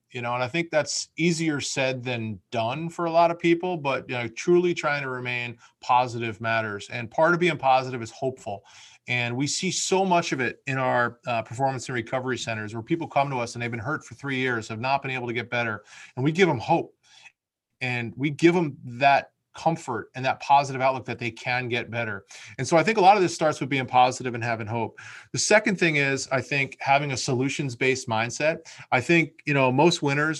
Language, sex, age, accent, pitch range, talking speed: English, male, 30-49, American, 120-155 Hz, 225 wpm